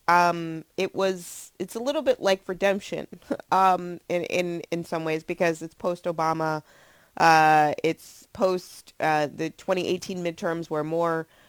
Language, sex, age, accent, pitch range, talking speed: English, female, 20-39, American, 160-195 Hz, 145 wpm